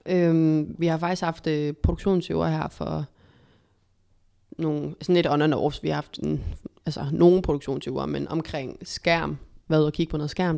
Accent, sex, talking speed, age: native, female, 165 wpm, 20-39